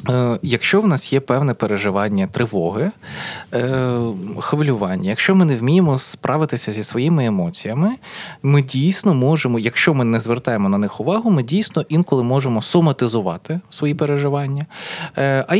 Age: 20-39